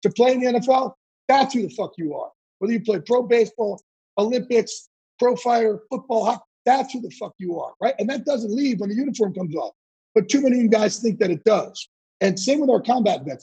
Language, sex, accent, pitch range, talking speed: English, male, American, 180-235 Hz, 235 wpm